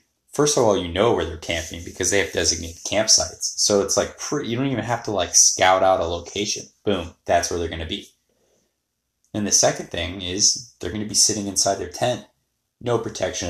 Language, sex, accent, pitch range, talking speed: English, male, American, 85-100 Hz, 205 wpm